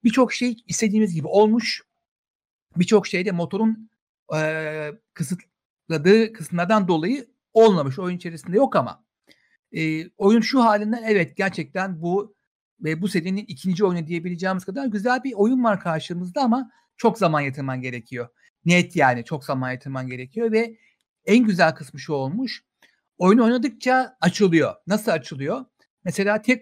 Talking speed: 140 wpm